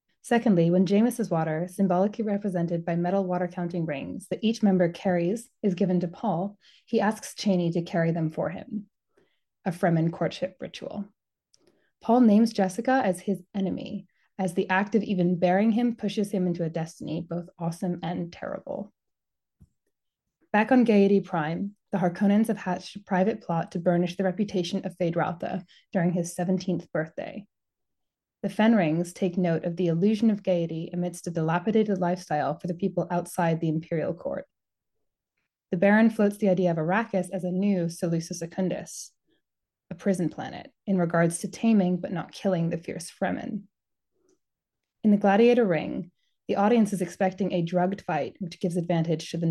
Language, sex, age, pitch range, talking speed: English, female, 20-39, 175-205 Hz, 165 wpm